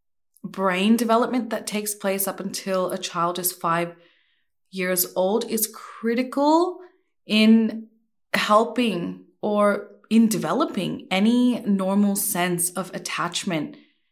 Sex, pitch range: female, 185-225 Hz